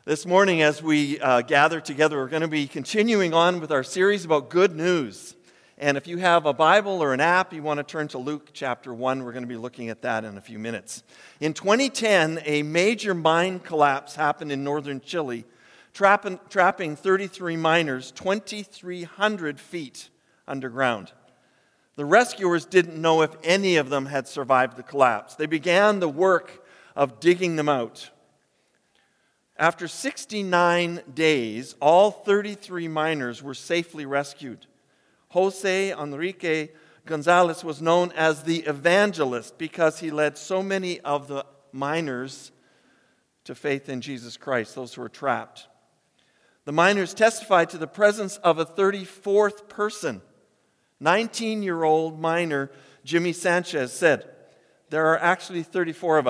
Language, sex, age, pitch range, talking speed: English, male, 50-69, 140-180 Hz, 145 wpm